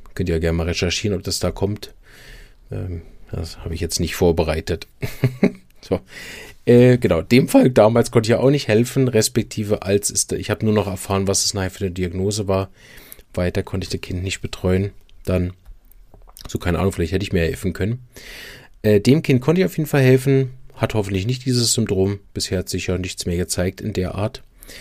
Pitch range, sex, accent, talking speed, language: 95-120 Hz, male, German, 205 wpm, German